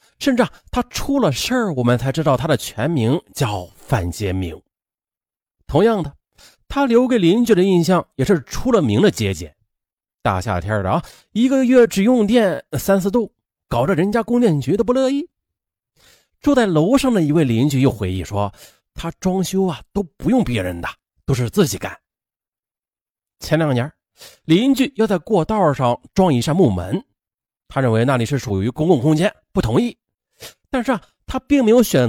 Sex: male